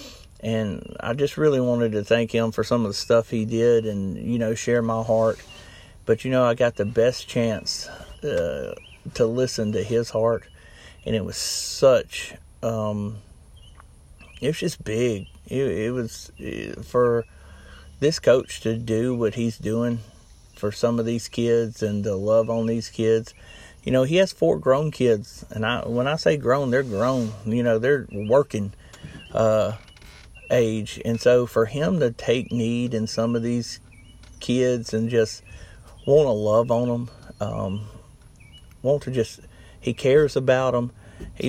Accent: American